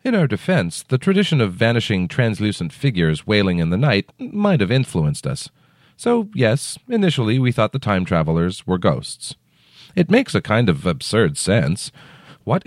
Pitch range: 100-150 Hz